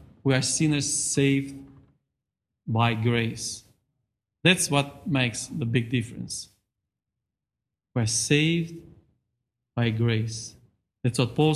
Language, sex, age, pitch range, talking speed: English, male, 40-59, 120-160 Hz, 100 wpm